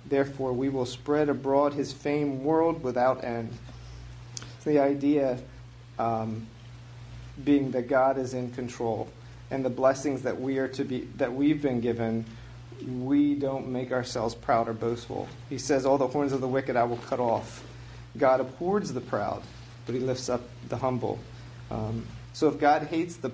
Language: English